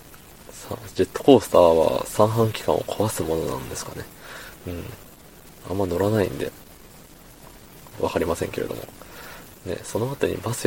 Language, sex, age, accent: Japanese, male, 20-39, native